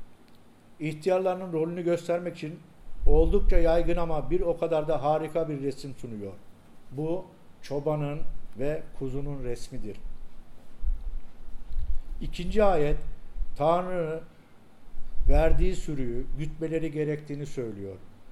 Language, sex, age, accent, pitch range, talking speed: English, male, 60-79, Turkish, 105-160 Hz, 90 wpm